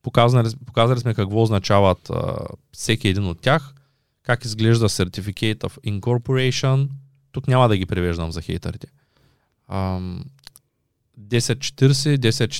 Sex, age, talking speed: male, 20-39, 110 wpm